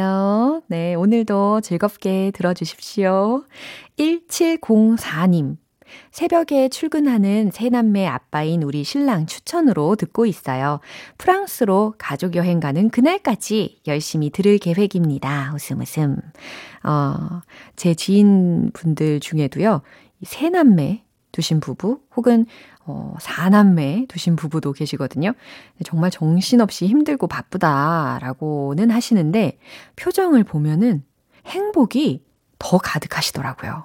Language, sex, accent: Korean, female, native